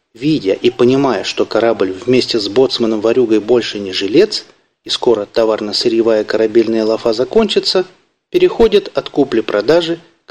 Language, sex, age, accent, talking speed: Russian, male, 30-49, native, 130 wpm